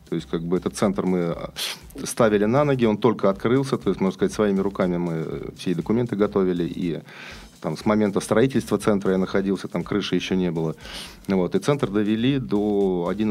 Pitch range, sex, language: 90-115 Hz, male, Russian